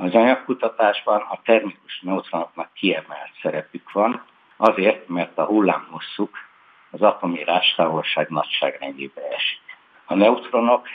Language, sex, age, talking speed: Hungarian, male, 60-79, 105 wpm